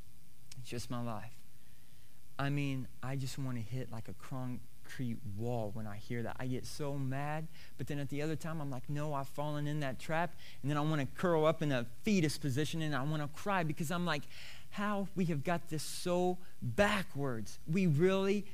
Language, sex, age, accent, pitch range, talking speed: English, male, 40-59, American, 130-185 Hz, 205 wpm